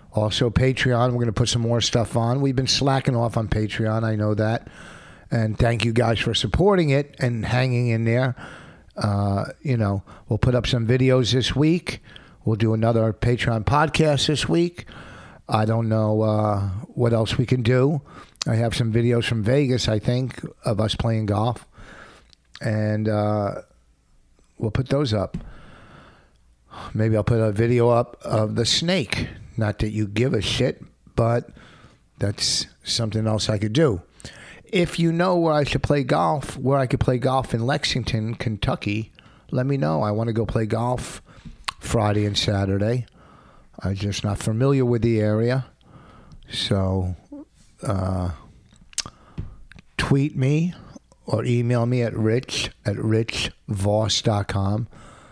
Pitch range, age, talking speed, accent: 105-130 Hz, 50-69, 155 wpm, American